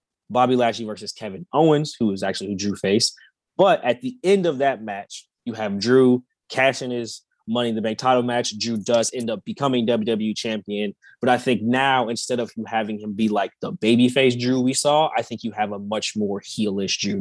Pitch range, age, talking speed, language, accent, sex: 110-130 Hz, 20-39, 210 wpm, English, American, male